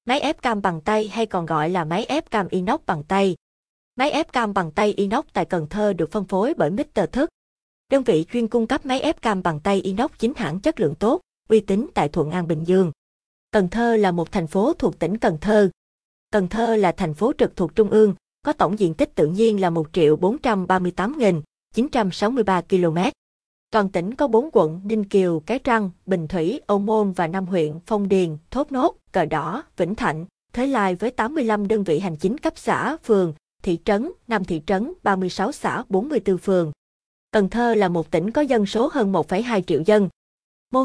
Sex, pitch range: female, 185-230 Hz